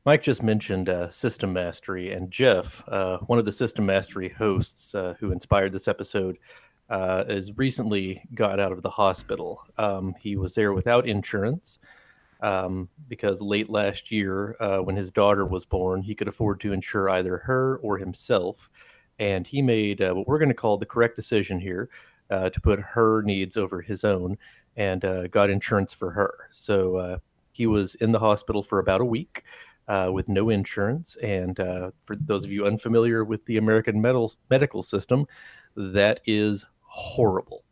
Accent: American